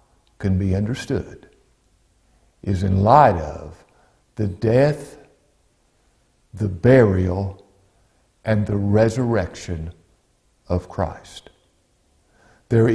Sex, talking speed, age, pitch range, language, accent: male, 80 wpm, 60-79, 100-130 Hz, English, American